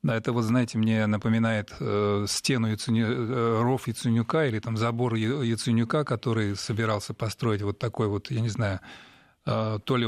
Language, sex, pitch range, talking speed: Russian, male, 110-130 Hz, 145 wpm